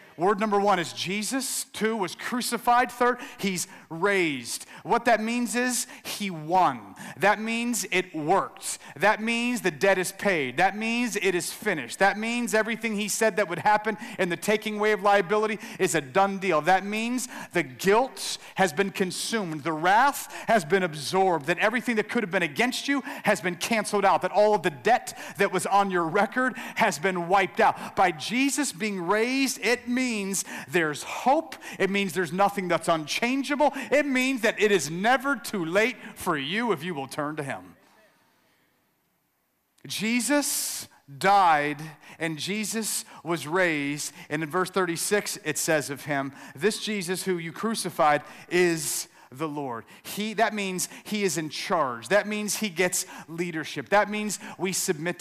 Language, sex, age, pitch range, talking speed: English, male, 40-59, 175-230 Hz, 170 wpm